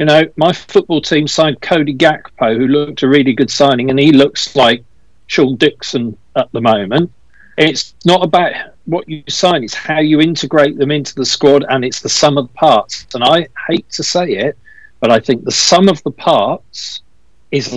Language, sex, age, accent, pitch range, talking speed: English, male, 50-69, British, 120-155 Hz, 195 wpm